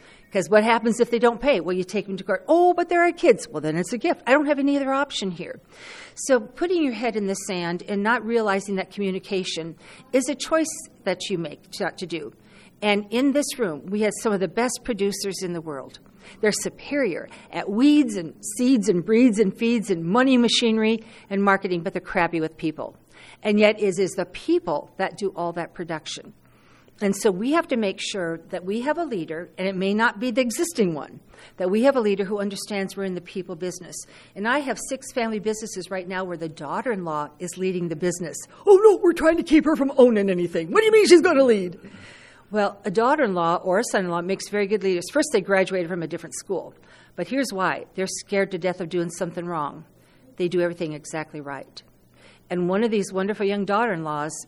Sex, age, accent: female, 50-69, American